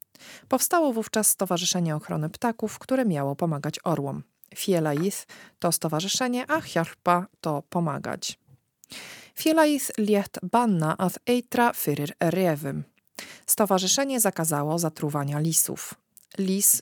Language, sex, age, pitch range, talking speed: Polish, female, 40-59, 160-220 Hz, 95 wpm